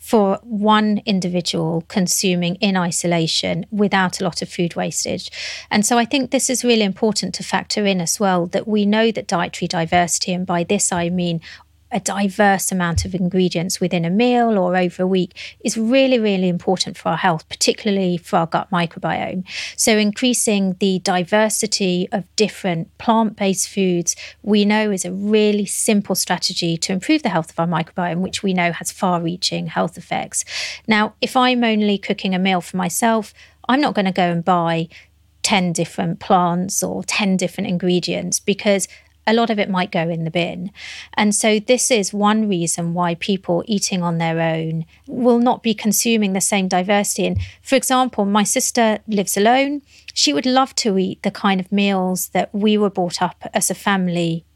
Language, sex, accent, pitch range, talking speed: English, female, British, 180-215 Hz, 180 wpm